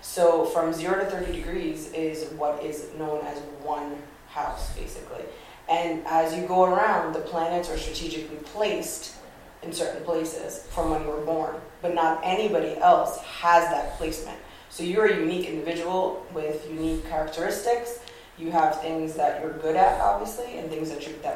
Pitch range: 155-175 Hz